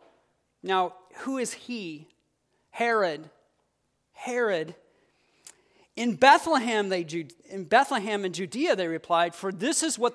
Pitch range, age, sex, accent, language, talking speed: 195-255 Hz, 40-59, male, American, English, 110 wpm